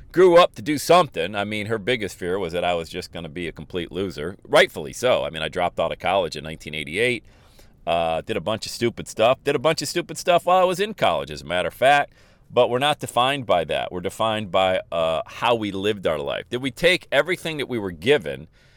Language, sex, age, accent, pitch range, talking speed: English, male, 40-59, American, 100-150 Hz, 250 wpm